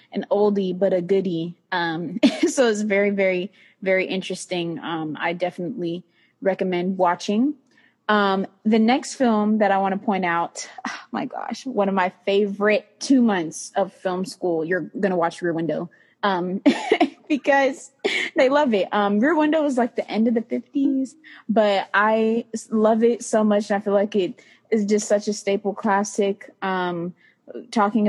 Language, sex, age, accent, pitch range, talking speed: English, female, 20-39, American, 190-245 Hz, 165 wpm